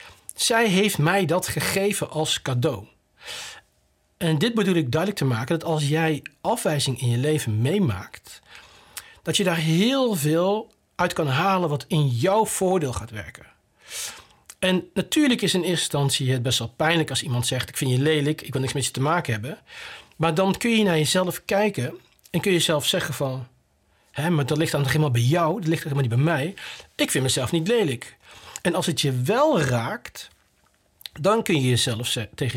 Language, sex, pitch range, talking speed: Dutch, male, 135-180 Hz, 190 wpm